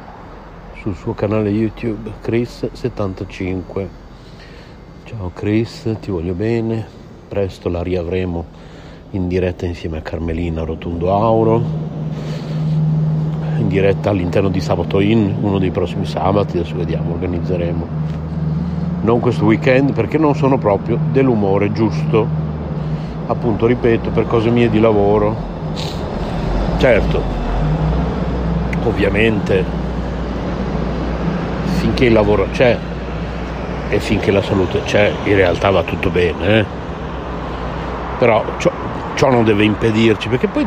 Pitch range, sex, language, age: 90-120 Hz, male, Italian, 60-79